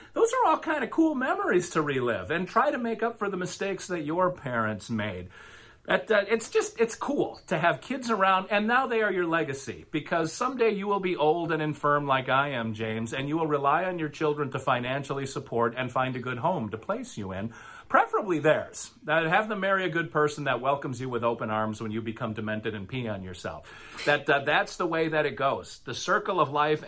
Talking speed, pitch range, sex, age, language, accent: 230 wpm, 135-180 Hz, male, 40-59, English, American